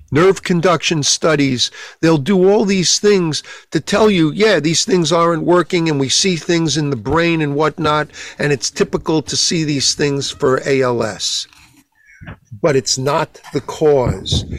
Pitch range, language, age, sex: 125-170 Hz, English, 50-69, male